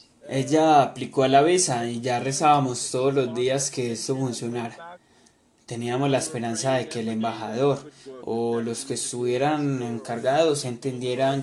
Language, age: Spanish, 20-39